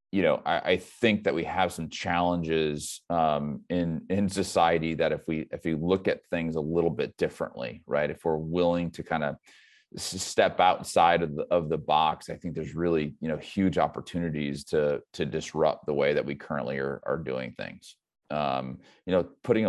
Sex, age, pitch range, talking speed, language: male, 30-49, 75-85 Hz, 200 wpm, English